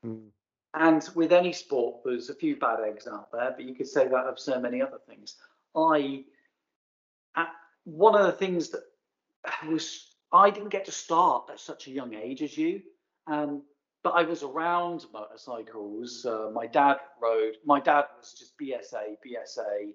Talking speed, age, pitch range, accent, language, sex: 170 wpm, 40-59, 120-175 Hz, British, English, male